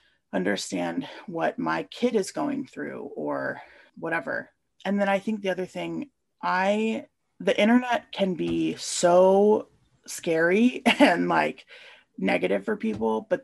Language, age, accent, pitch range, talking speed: English, 30-49, American, 175-245 Hz, 130 wpm